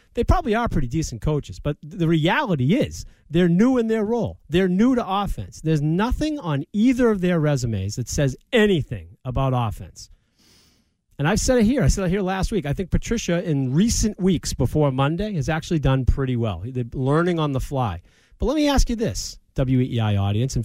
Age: 40-59